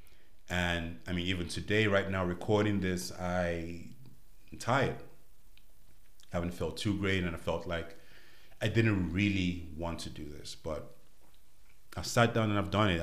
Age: 30-49